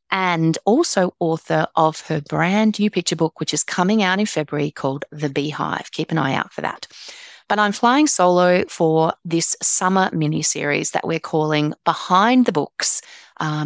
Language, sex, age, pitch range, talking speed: English, female, 30-49, 155-195 Hz, 170 wpm